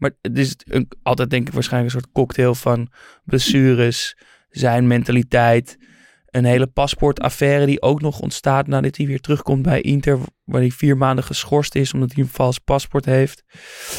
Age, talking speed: 20-39, 170 wpm